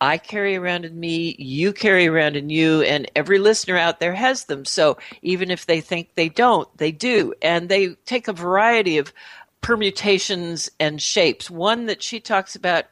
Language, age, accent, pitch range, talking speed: English, 60-79, American, 160-210 Hz, 185 wpm